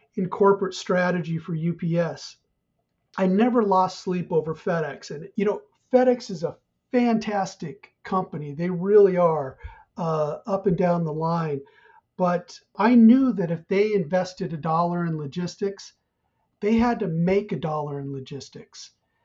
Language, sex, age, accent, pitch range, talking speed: English, male, 40-59, American, 170-215 Hz, 145 wpm